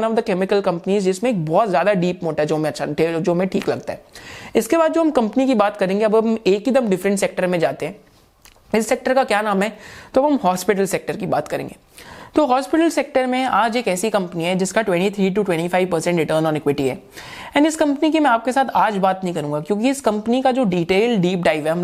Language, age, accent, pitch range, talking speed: Hindi, 30-49, native, 170-245 Hz, 235 wpm